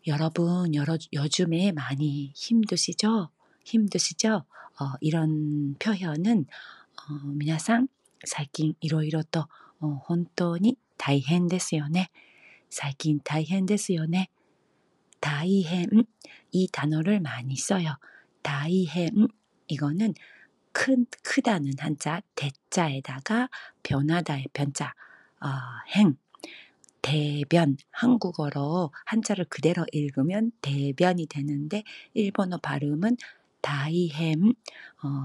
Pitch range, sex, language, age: 150-200 Hz, female, Korean, 40-59